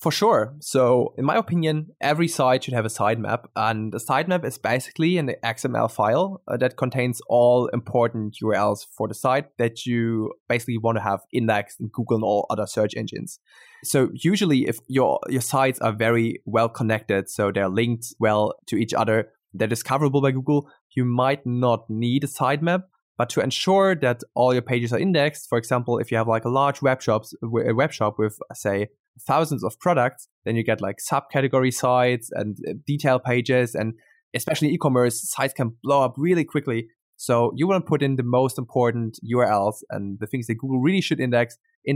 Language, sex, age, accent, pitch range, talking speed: English, male, 20-39, German, 115-140 Hz, 190 wpm